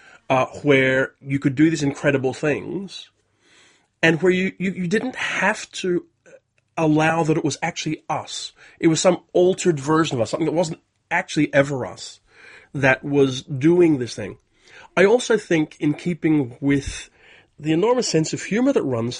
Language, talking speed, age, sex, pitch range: English, 165 wpm, 30-49, male, 130-165 Hz